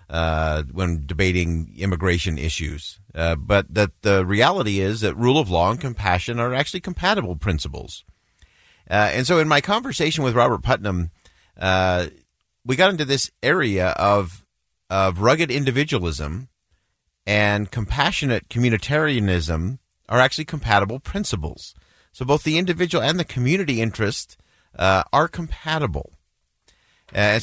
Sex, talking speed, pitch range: male, 130 wpm, 95-125 Hz